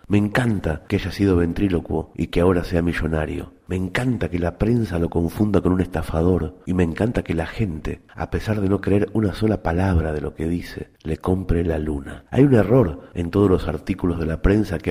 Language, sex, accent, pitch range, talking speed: English, male, Argentinian, 80-100 Hz, 215 wpm